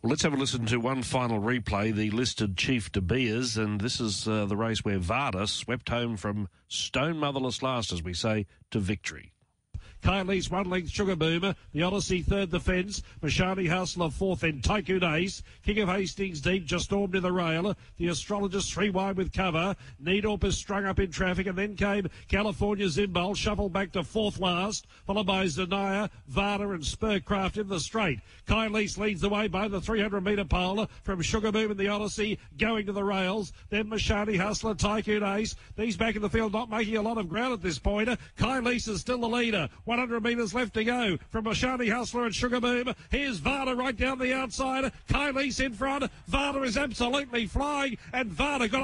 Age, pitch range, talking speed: 50-69, 165-220 Hz, 190 wpm